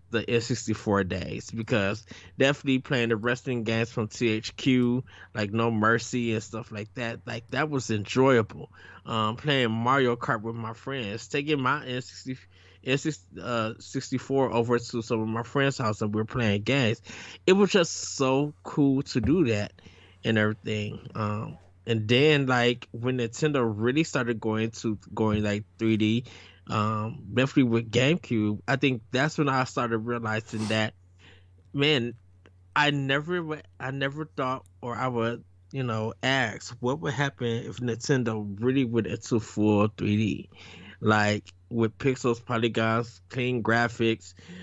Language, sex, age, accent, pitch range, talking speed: English, male, 20-39, American, 105-125 Hz, 145 wpm